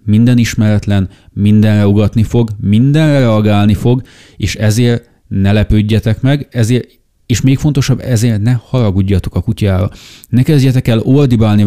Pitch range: 95-120 Hz